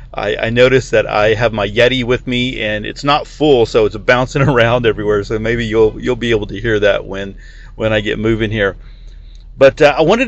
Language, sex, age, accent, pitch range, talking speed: English, male, 40-59, American, 110-140 Hz, 220 wpm